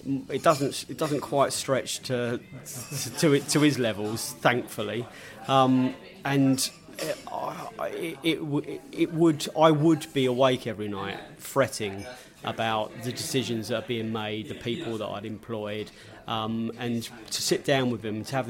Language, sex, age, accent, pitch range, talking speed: English, male, 30-49, British, 115-135 Hz, 160 wpm